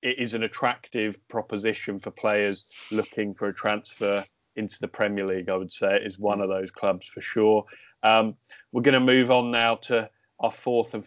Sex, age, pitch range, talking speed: male, 30-49, 105-125 Hz, 200 wpm